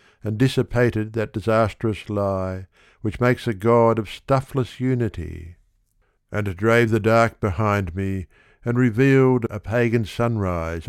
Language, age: English, 60-79